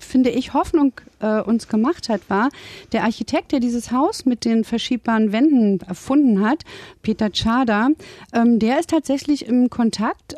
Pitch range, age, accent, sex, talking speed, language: 195-260 Hz, 40-59, German, female, 150 wpm, German